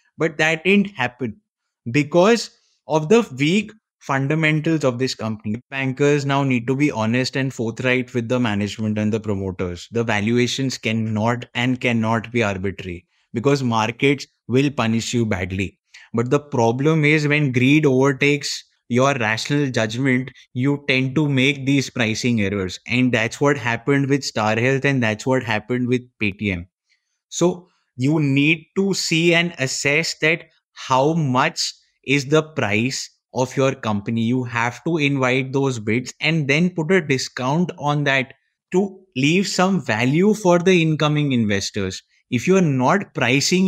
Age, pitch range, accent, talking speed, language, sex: 20-39, 120-155 Hz, Indian, 155 wpm, English, male